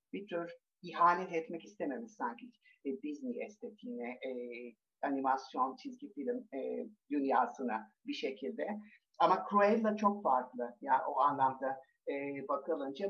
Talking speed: 110 wpm